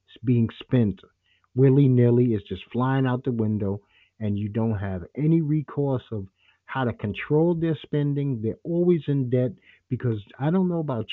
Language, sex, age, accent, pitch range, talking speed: English, male, 50-69, American, 105-140 Hz, 160 wpm